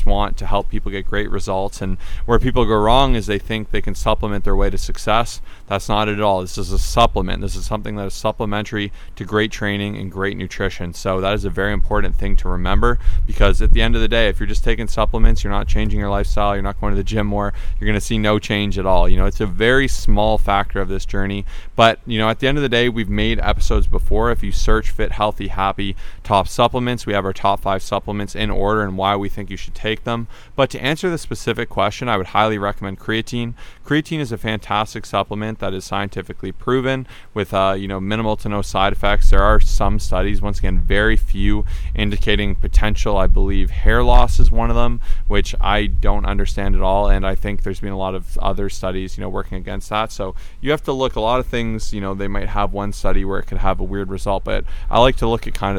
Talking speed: 245 wpm